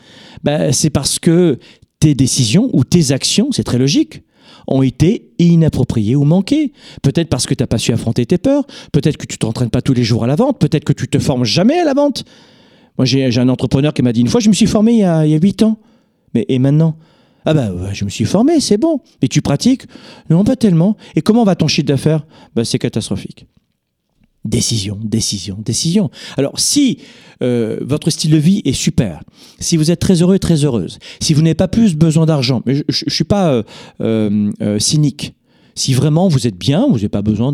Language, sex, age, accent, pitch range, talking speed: French, male, 40-59, French, 120-165 Hz, 225 wpm